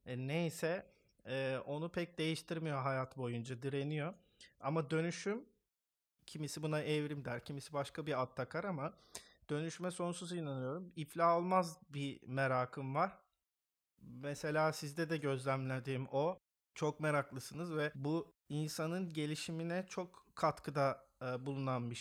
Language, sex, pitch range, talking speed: Turkish, male, 140-170 Hz, 115 wpm